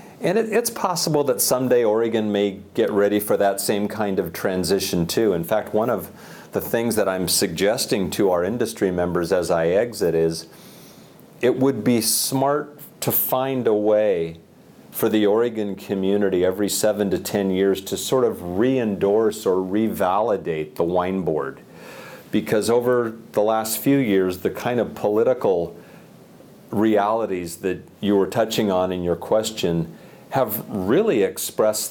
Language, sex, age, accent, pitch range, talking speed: English, male, 40-59, American, 90-110 Hz, 150 wpm